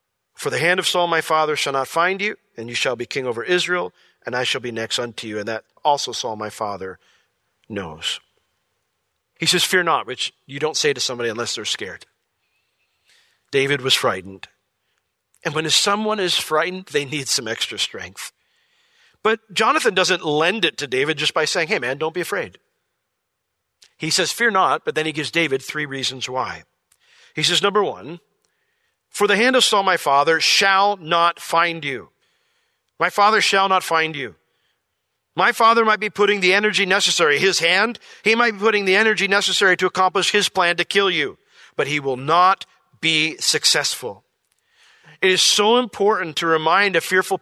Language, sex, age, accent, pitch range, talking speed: English, male, 40-59, American, 155-210 Hz, 180 wpm